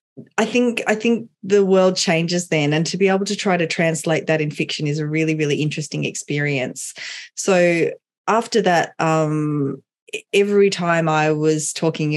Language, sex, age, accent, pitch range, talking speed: English, female, 20-39, Australian, 155-195 Hz, 170 wpm